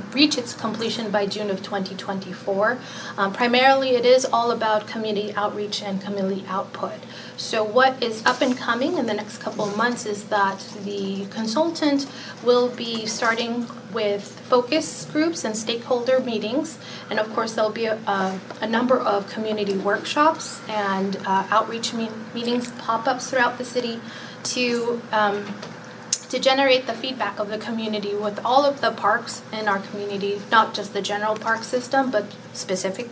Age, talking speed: 30-49, 155 wpm